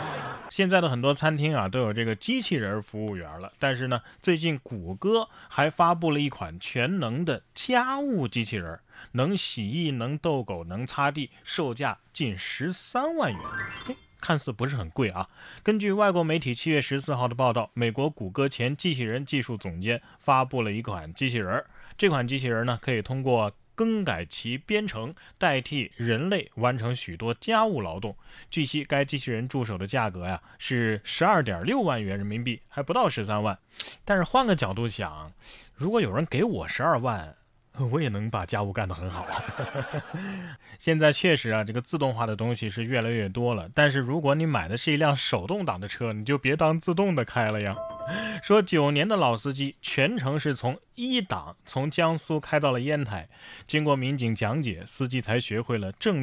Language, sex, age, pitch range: Chinese, male, 20-39, 115-160 Hz